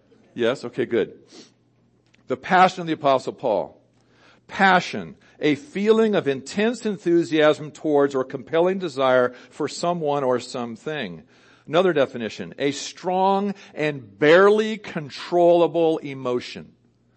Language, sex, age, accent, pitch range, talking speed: English, male, 50-69, American, 125-170 Hz, 110 wpm